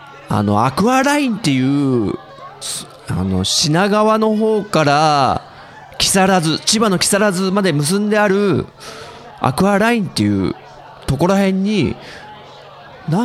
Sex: male